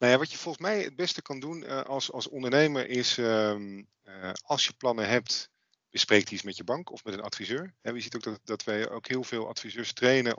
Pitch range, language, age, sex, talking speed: 100-125 Hz, Dutch, 40-59, male, 235 wpm